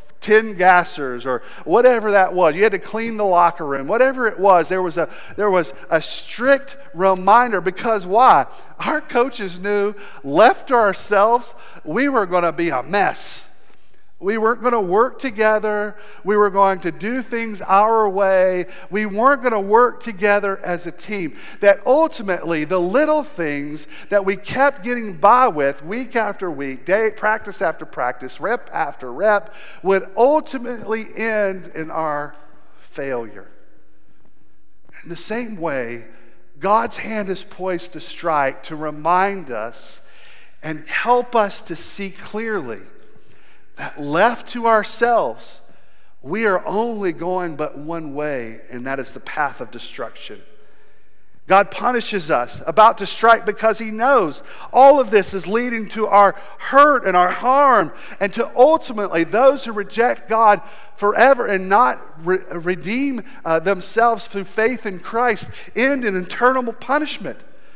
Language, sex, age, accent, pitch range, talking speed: English, male, 50-69, American, 175-230 Hz, 145 wpm